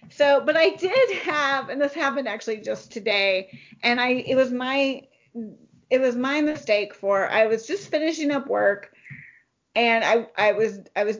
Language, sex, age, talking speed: English, female, 30-49, 175 wpm